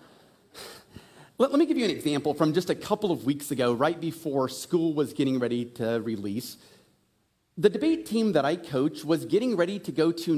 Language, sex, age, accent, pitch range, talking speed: English, male, 40-59, American, 150-250 Hz, 190 wpm